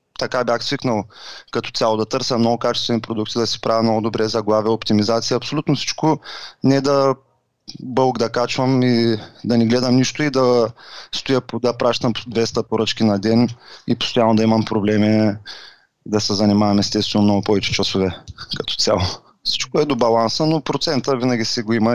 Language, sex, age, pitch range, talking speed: Bulgarian, male, 20-39, 110-130 Hz, 170 wpm